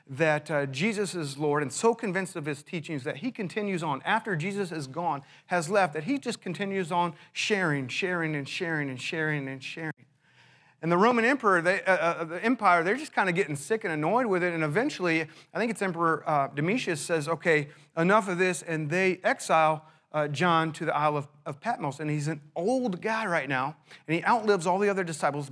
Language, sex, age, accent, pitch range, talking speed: English, male, 40-59, American, 155-225 Hz, 215 wpm